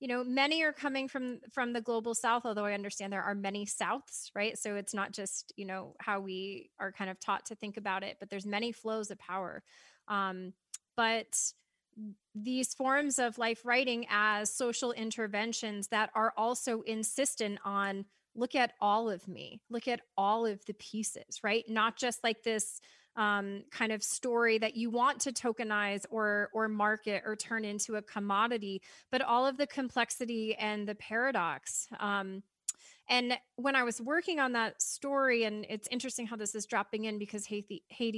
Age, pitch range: 20-39, 205-240 Hz